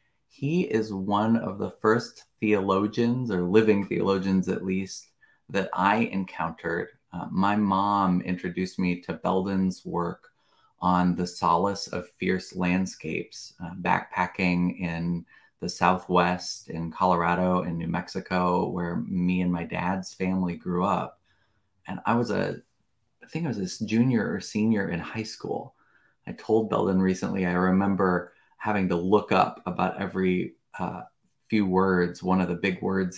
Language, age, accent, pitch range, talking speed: English, 30-49, American, 90-110 Hz, 150 wpm